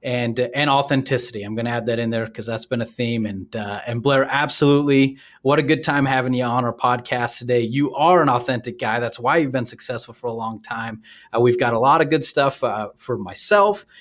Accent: American